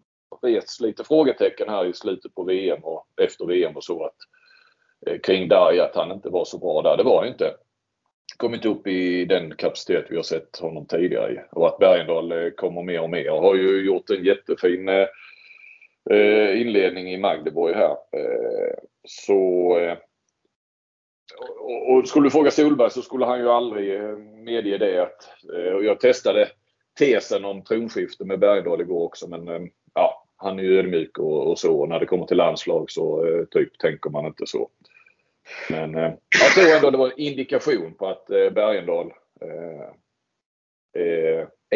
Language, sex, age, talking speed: Swedish, male, 30-49, 175 wpm